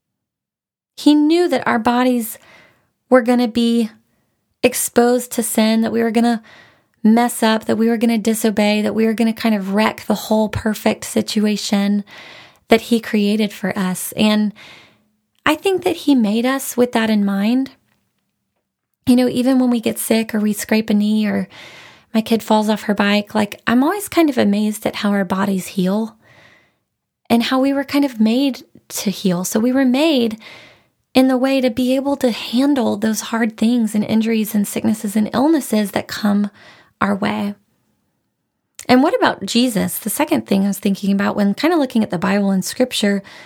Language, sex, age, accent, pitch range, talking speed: English, female, 20-39, American, 210-255 Hz, 190 wpm